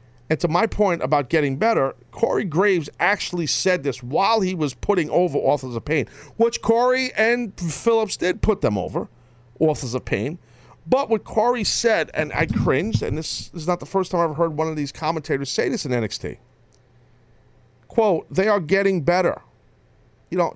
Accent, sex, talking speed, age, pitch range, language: American, male, 185 wpm, 40-59, 140-220 Hz, English